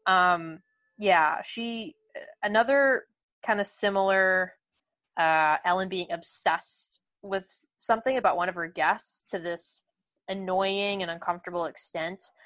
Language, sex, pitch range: English, female, 180-230 Hz